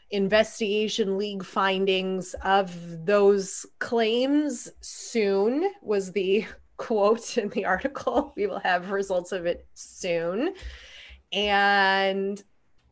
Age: 30-49